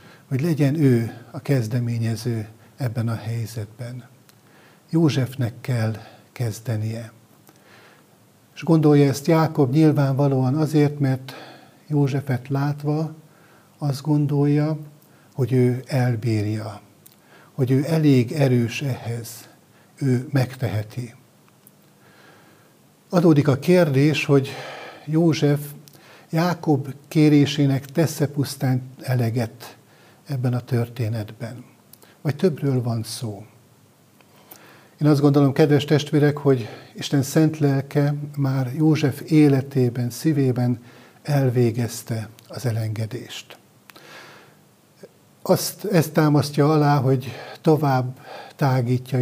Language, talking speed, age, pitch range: Hungarian, 85 wpm, 60-79, 125-150 Hz